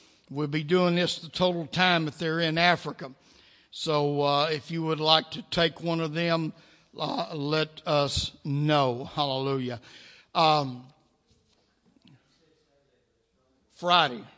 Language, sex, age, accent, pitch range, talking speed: English, male, 60-79, American, 145-180 Hz, 120 wpm